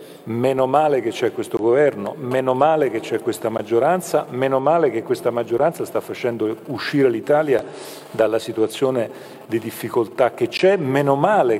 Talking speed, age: 150 wpm, 40-59